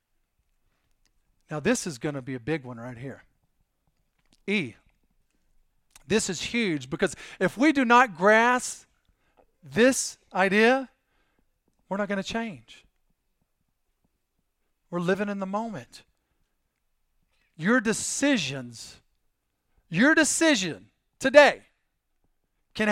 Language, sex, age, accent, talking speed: English, male, 40-59, American, 100 wpm